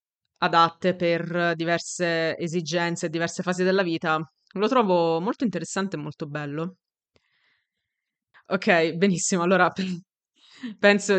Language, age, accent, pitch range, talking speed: Italian, 20-39, native, 165-190 Hz, 105 wpm